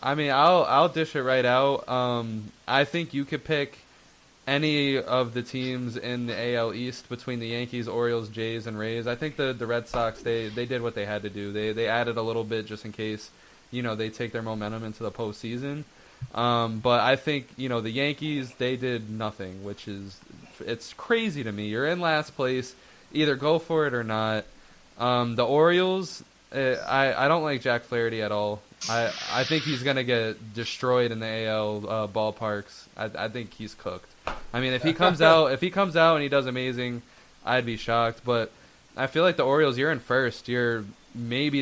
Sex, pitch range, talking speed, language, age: male, 115-135 Hz, 210 wpm, English, 20-39